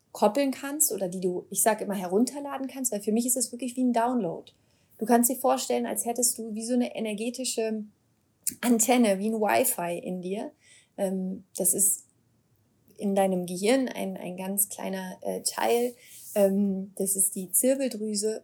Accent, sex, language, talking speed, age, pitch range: German, female, German, 165 wpm, 30-49, 195-235 Hz